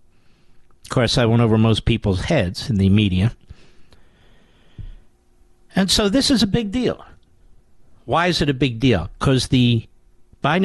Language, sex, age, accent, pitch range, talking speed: English, male, 50-69, American, 120-160 Hz, 150 wpm